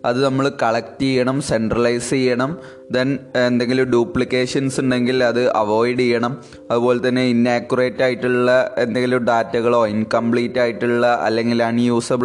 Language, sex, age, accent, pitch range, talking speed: Malayalam, male, 20-39, native, 110-130 Hz, 115 wpm